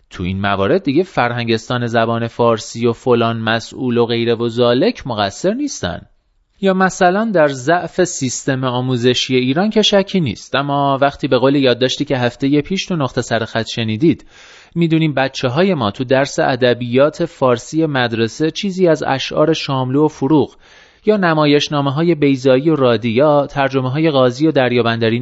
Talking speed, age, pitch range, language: 160 wpm, 30-49, 120-170 Hz, Persian